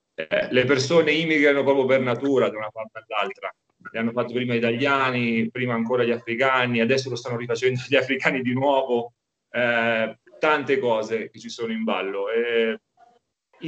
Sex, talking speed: male, 165 wpm